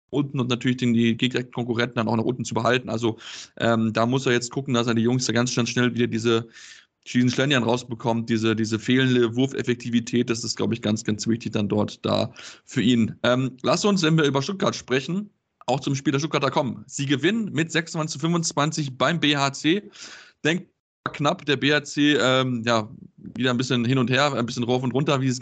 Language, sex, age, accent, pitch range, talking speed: German, male, 20-39, German, 120-165 Hz, 200 wpm